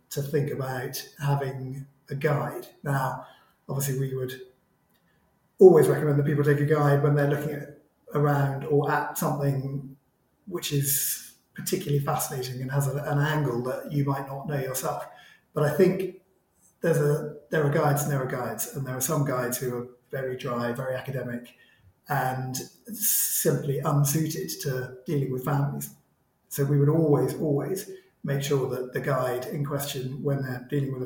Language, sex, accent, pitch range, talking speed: English, male, British, 130-150 Hz, 165 wpm